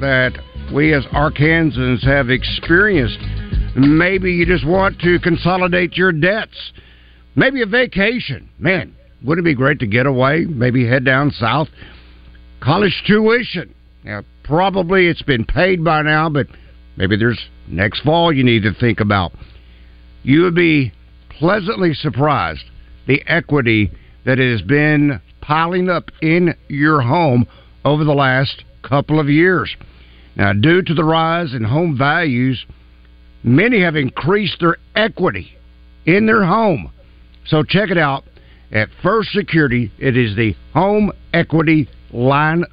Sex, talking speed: male, 140 wpm